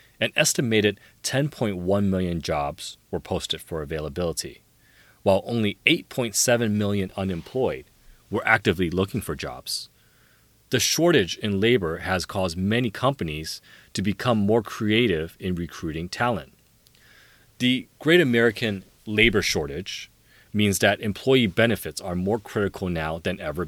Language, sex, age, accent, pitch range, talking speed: English, male, 30-49, American, 90-120 Hz, 125 wpm